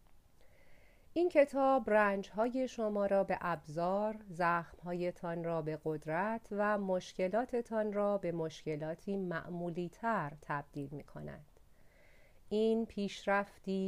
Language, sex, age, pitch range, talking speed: Persian, female, 40-59, 160-210 Hz, 100 wpm